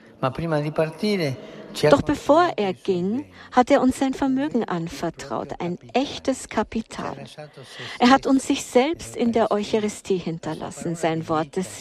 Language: German